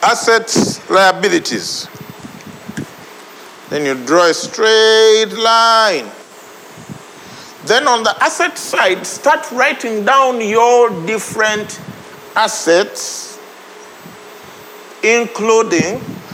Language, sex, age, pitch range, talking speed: English, male, 50-69, 160-220 Hz, 75 wpm